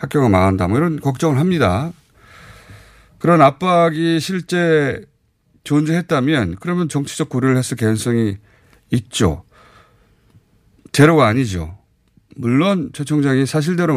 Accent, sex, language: native, male, Korean